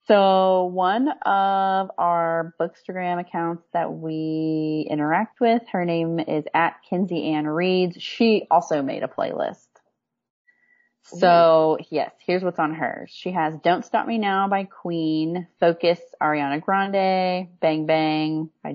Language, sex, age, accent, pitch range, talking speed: English, female, 30-49, American, 160-190 Hz, 135 wpm